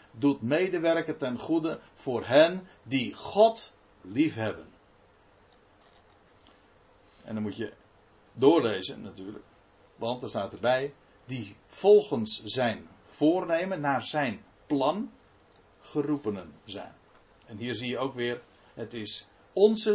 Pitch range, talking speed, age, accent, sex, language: 105-150 Hz, 110 wpm, 60-79, Dutch, male, Dutch